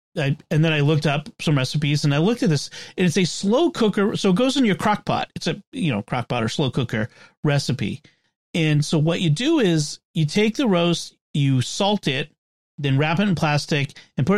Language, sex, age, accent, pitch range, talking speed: English, male, 40-59, American, 130-170 Hz, 225 wpm